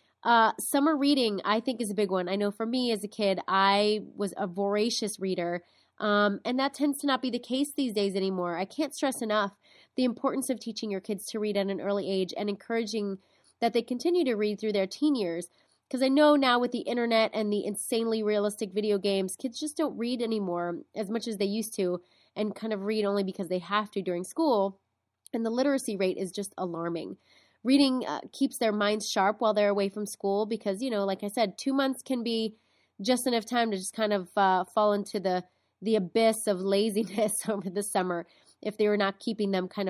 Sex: female